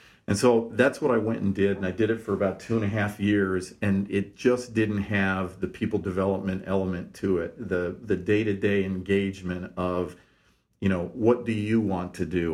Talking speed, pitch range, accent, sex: 205 wpm, 95-110 Hz, American, male